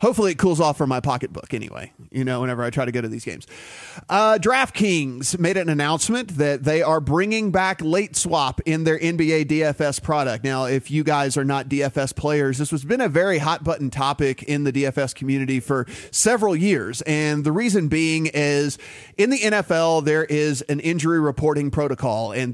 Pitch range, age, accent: 135-165 Hz, 30-49, American